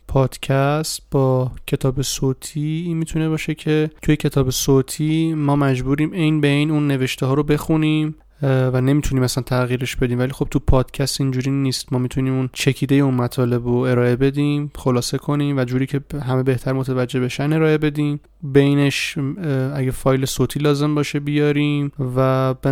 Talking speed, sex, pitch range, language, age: 160 wpm, male, 130-150 Hz, Persian, 20-39